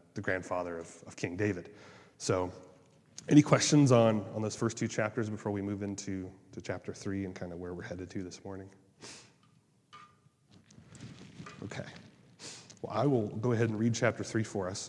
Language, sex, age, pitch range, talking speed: English, male, 30-49, 95-120 Hz, 175 wpm